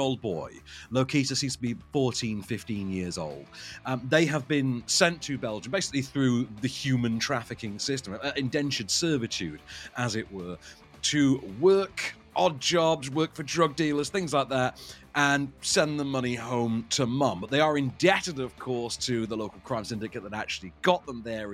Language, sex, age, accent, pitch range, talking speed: English, male, 40-59, British, 110-150 Hz, 175 wpm